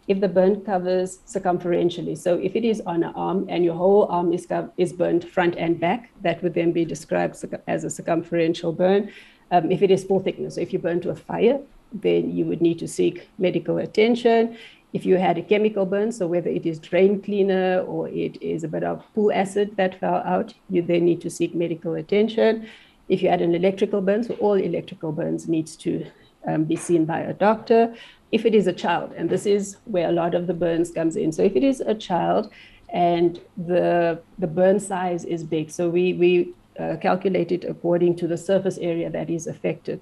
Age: 60-79